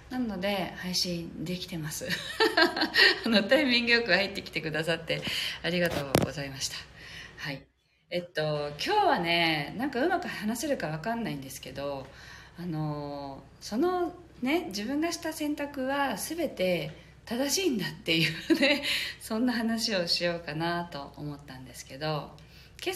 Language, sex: Japanese, female